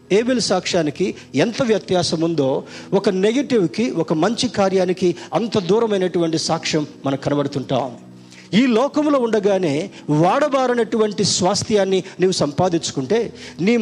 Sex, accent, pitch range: male, native, 150-215 Hz